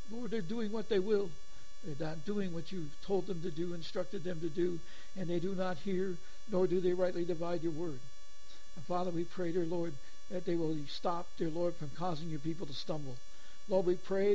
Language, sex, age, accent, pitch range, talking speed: English, male, 60-79, American, 175-200 Hz, 220 wpm